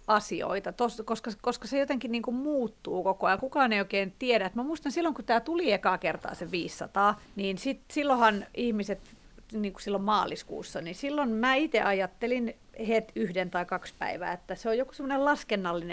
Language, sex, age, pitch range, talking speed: Finnish, female, 40-59, 180-235 Hz, 185 wpm